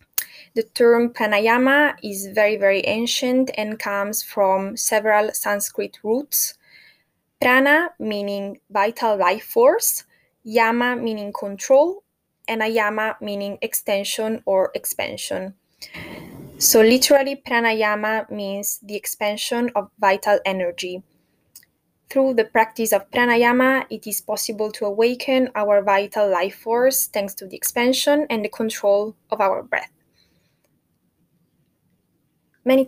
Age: 20-39